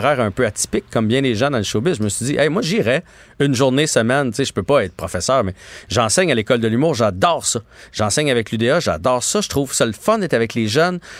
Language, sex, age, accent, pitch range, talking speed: French, male, 40-59, Canadian, 105-145 Hz, 265 wpm